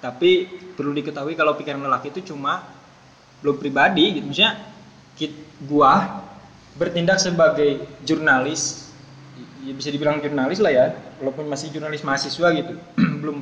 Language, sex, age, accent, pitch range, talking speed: Indonesian, male, 20-39, native, 140-175 Hz, 125 wpm